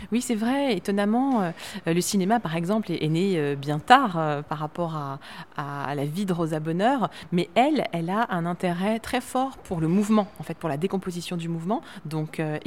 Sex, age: female, 30-49